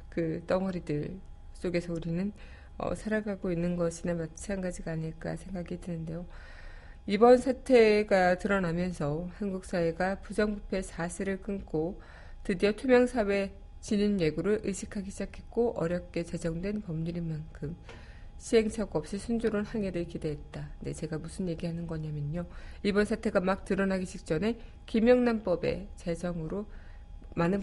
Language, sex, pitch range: Korean, female, 165-210 Hz